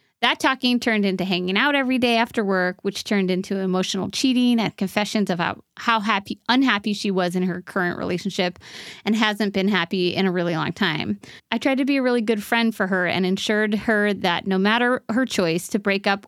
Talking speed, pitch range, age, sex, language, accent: 210 wpm, 185-230 Hz, 30-49, female, English, American